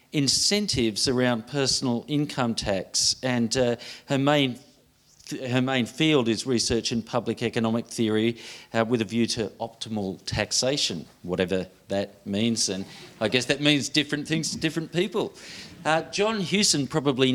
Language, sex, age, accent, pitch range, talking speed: English, male, 40-59, Australian, 115-145 Hz, 150 wpm